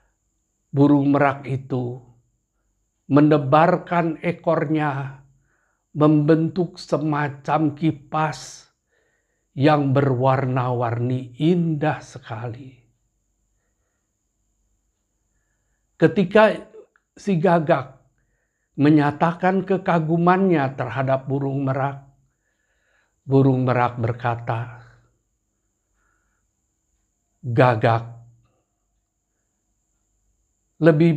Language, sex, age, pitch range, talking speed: Indonesian, male, 50-69, 115-155 Hz, 50 wpm